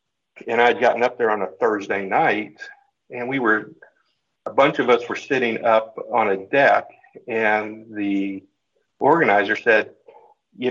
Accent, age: American, 50-69